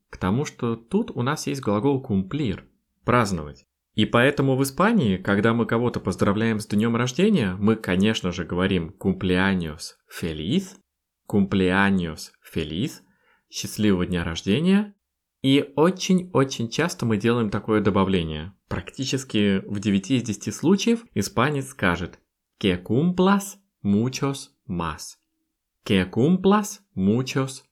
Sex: male